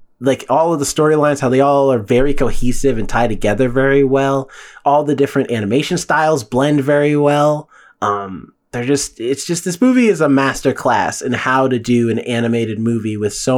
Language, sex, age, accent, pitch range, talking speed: English, male, 20-39, American, 120-175 Hz, 190 wpm